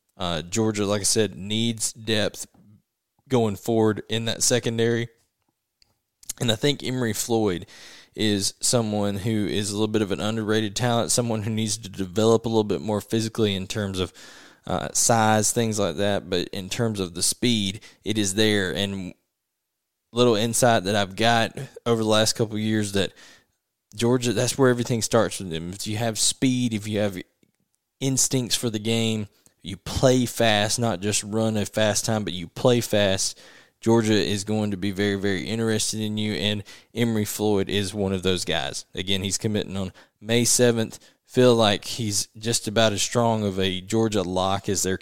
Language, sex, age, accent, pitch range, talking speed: English, male, 10-29, American, 100-115 Hz, 180 wpm